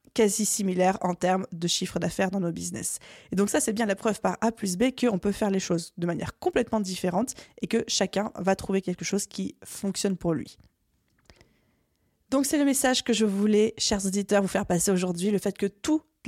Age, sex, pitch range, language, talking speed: 20-39, female, 185-225 Hz, French, 215 wpm